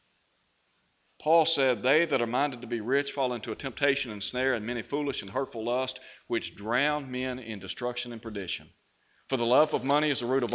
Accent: American